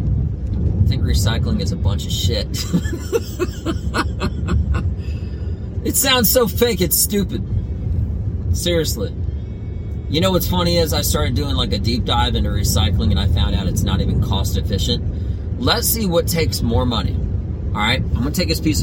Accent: American